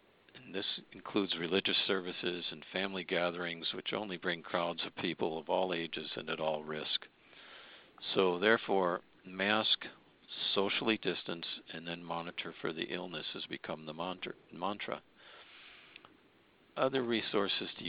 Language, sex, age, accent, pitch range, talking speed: English, male, 50-69, American, 85-100 Hz, 130 wpm